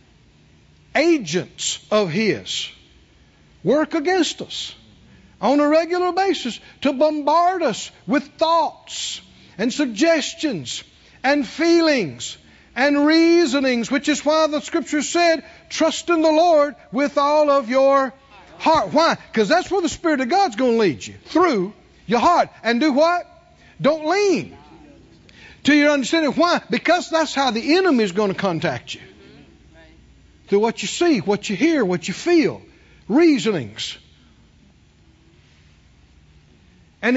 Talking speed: 130 wpm